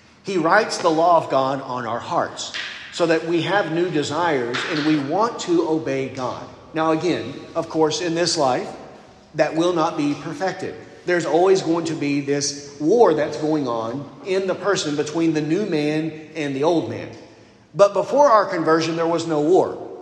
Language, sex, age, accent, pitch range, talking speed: English, male, 40-59, American, 145-200 Hz, 185 wpm